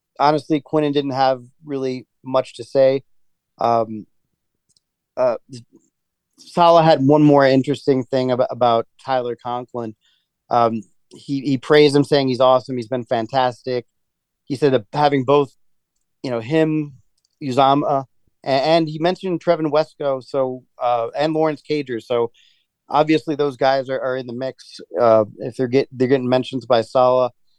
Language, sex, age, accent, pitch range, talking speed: English, male, 30-49, American, 125-150 Hz, 150 wpm